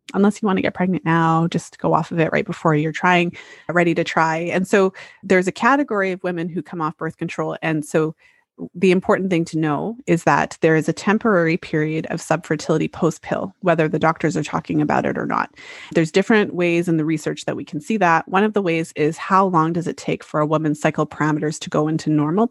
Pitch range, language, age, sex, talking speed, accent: 160-190 Hz, English, 30-49, female, 230 wpm, American